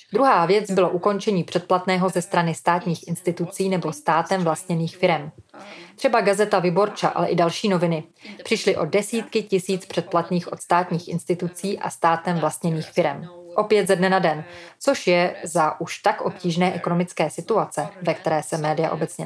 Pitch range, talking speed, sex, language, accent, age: 170-200 Hz, 155 wpm, female, Czech, native, 20-39